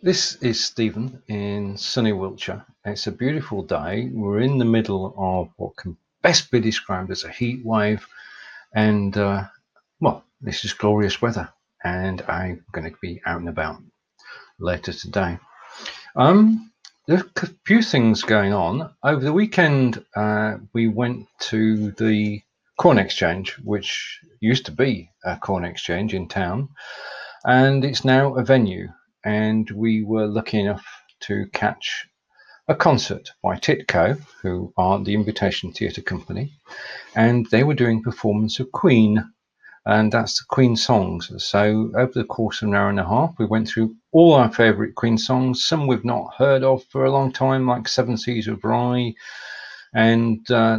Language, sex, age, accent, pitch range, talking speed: English, male, 40-59, British, 105-125 Hz, 160 wpm